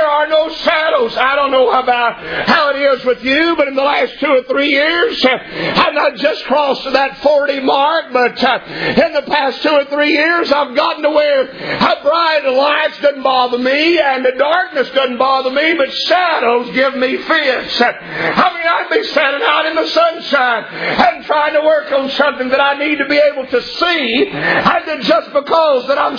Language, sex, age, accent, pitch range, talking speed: English, male, 50-69, American, 265-310 Hz, 195 wpm